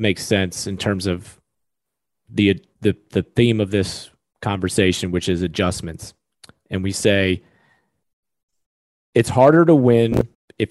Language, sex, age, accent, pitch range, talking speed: English, male, 30-49, American, 95-120 Hz, 130 wpm